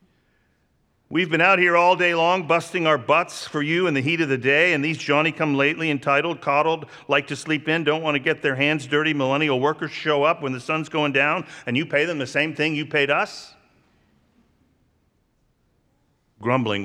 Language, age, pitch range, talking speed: English, 50-69, 115-155 Hz, 190 wpm